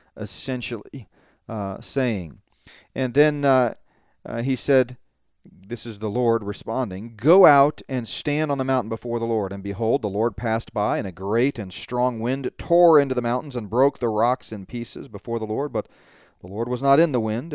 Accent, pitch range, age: American, 105-135 Hz, 40-59